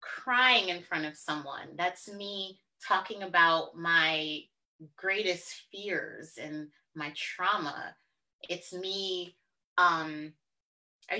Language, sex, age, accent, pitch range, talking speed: English, female, 20-39, American, 175-260 Hz, 100 wpm